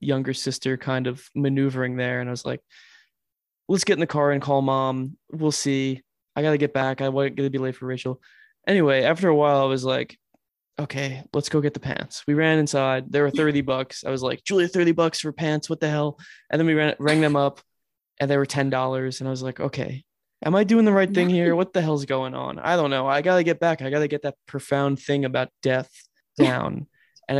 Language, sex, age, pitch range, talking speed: English, male, 20-39, 135-155 Hz, 235 wpm